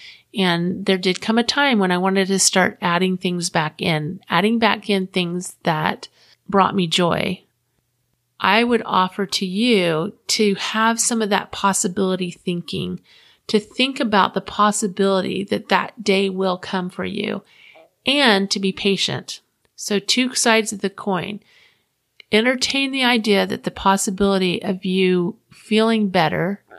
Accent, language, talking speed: American, English, 150 wpm